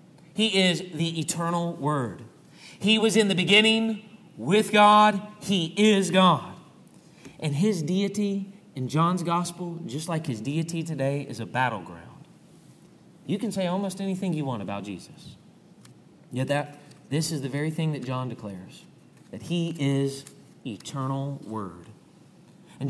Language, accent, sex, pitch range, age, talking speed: English, American, male, 150-210 Hz, 30-49, 140 wpm